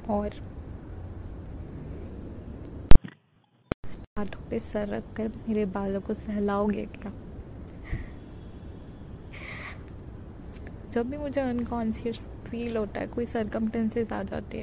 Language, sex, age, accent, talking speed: Hindi, female, 20-39, native, 80 wpm